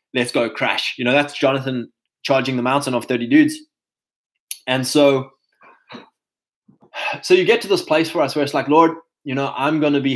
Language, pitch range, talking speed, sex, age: English, 125-155 Hz, 195 wpm, male, 20-39